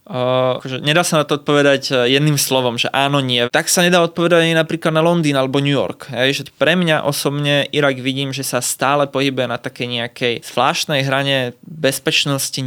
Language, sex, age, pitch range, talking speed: Slovak, male, 20-39, 125-145 Hz, 185 wpm